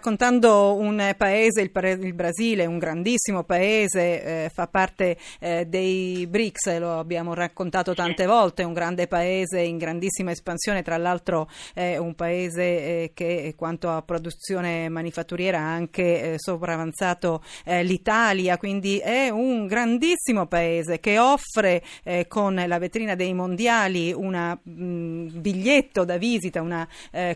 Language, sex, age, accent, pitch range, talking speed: Italian, female, 40-59, native, 175-210 Hz, 140 wpm